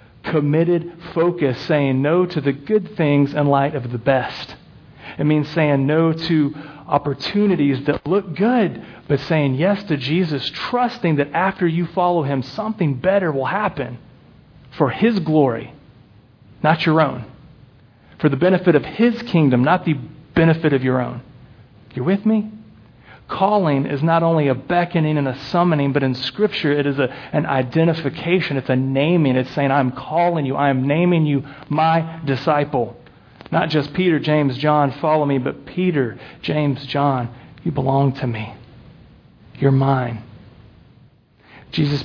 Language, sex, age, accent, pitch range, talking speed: English, male, 40-59, American, 135-170 Hz, 150 wpm